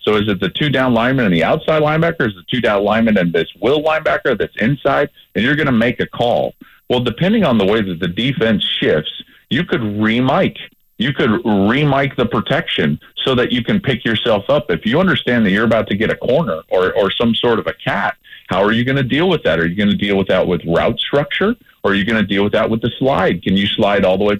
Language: English